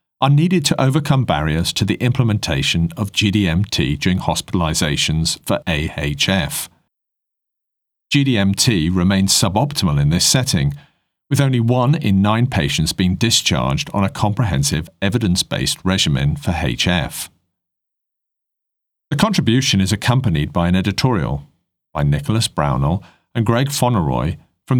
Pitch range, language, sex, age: 85-130 Hz, English, male, 50-69